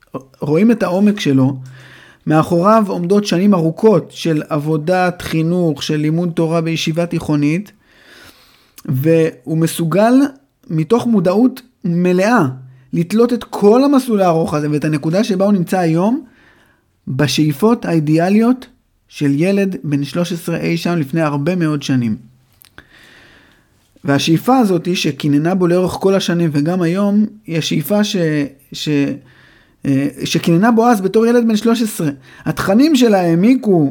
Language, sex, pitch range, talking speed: Hebrew, male, 145-195 Hz, 120 wpm